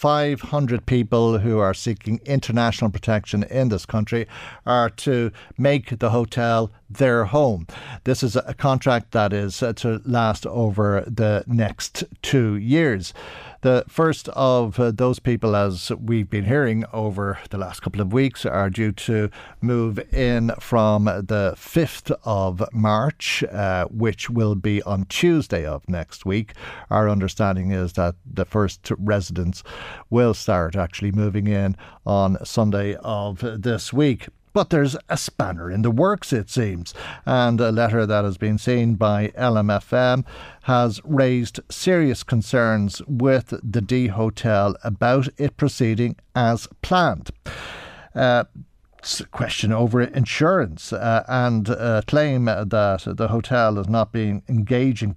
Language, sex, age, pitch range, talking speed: English, male, 50-69, 105-125 Hz, 140 wpm